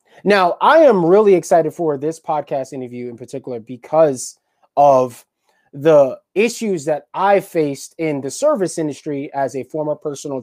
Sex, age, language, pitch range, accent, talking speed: male, 20-39, English, 140-185 Hz, American, 150 wpm